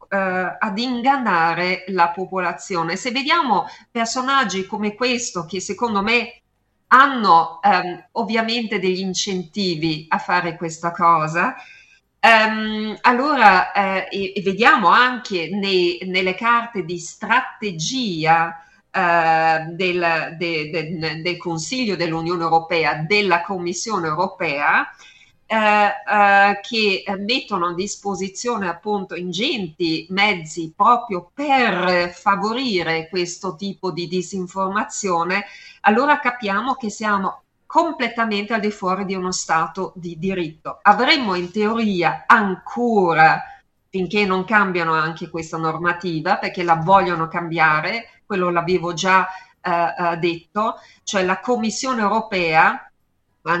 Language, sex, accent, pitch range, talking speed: Italian, female, native, 175-215 Hz, 95 wpm